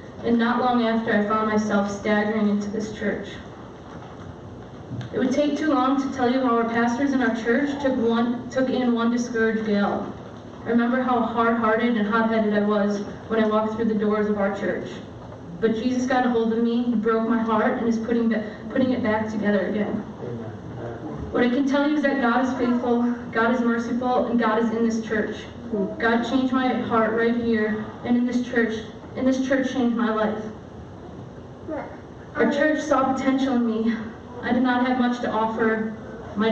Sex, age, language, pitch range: female, 20-39, English, 220-245 Hz